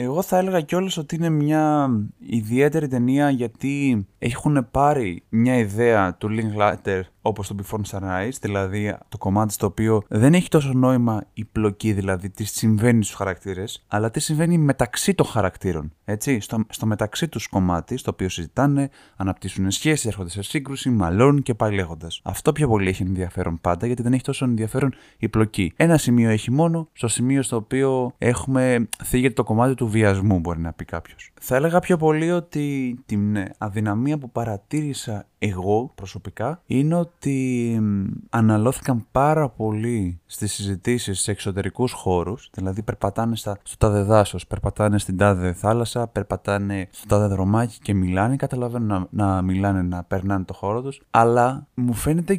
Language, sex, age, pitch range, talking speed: Greek, male, 20-39, 100-140 Hz, 165 wpm